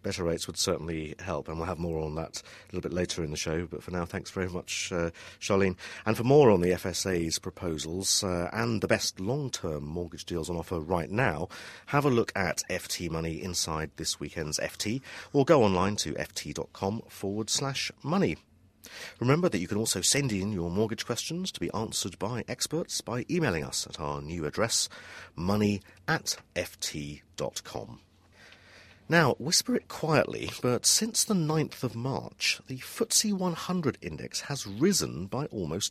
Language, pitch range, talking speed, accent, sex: English, 85-135 Hz, 175 wpm, British, male